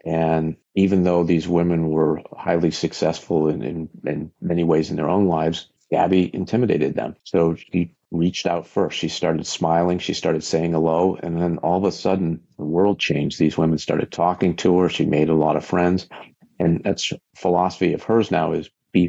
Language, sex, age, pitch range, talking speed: English, male, 50-69, 80-90 Hz, 190 wpm